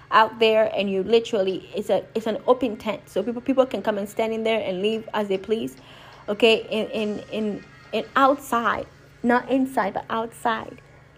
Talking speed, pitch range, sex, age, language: 190 wpm, 200-245 Hz, female, 20-39, English